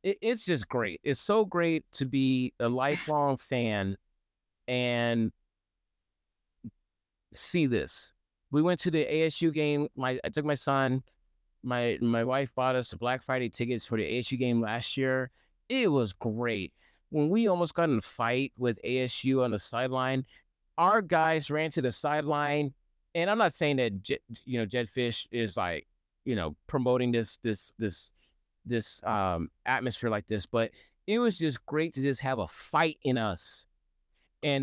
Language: English